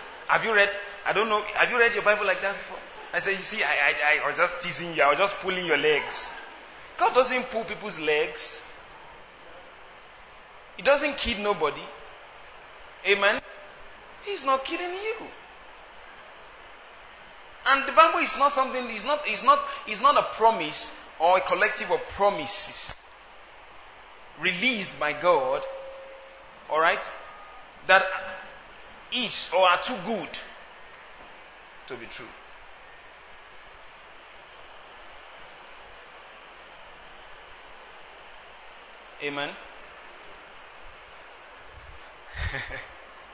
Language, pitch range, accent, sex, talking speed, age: English, 175-265 Hz, Nigerian, male, 105 wpm, 30-49